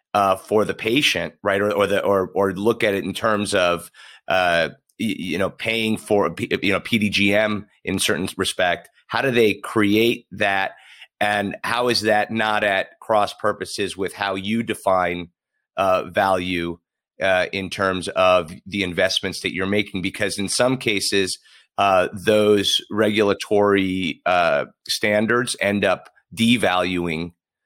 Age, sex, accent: 30-49, male, American